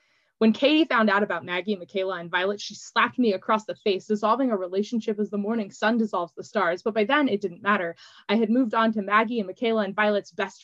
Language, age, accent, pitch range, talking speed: English, 20-39, American, 195-250 Hz, 235 wpm